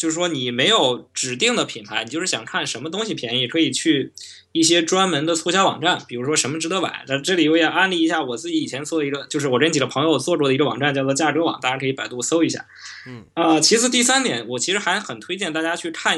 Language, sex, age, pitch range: Chinese, male, 20-39, 140-180 Hz